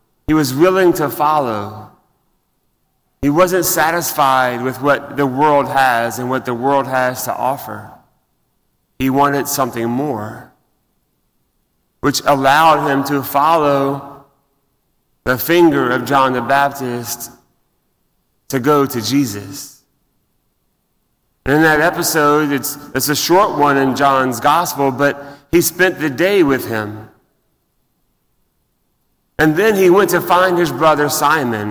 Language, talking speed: English, 125 wpm